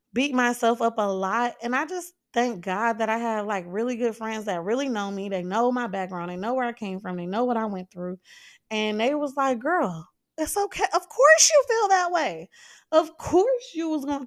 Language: English